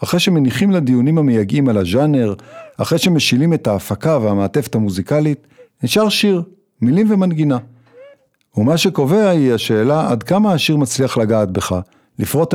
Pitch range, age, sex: 110-170 Hz, 50-69, male